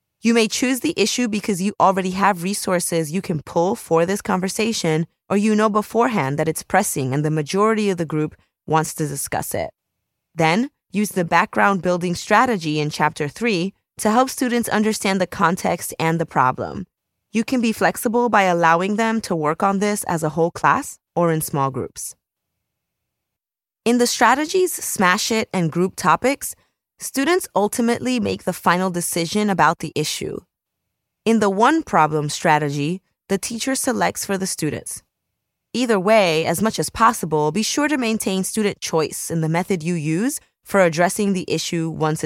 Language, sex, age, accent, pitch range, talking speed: English, female, 20-39, American, 160-220 Hz, 170 wpm